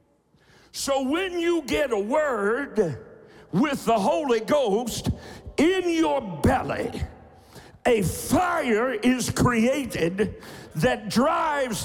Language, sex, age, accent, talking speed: English, male, 60-79, American, 95 wpm